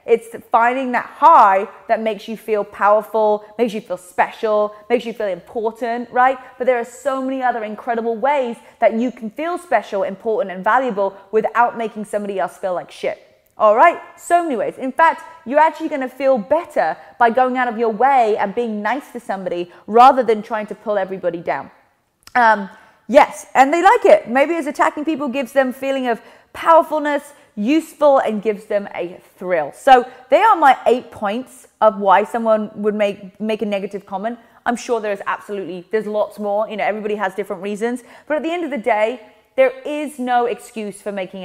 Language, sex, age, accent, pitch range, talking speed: English, female, 30-49, British, 210-270 Hz, 195 wpm